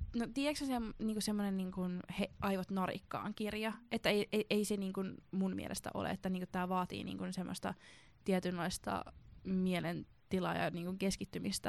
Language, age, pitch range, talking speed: Finnish, 20-39, 180-205 Hz, 145 wpm